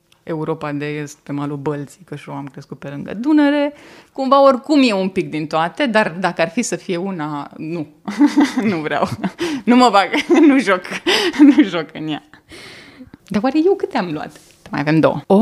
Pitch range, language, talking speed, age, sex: 160-245 Hz, Romanian, 190 wpm, 20-39, female